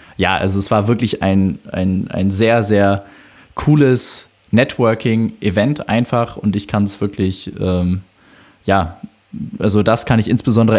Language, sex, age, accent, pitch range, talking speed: German, male, 20-39, German, 95-115 Hz, 140 wpm